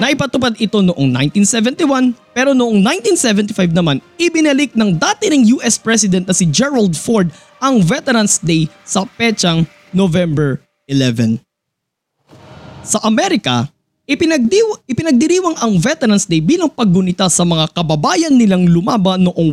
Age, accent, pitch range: 20-39, native, 170-255 Hz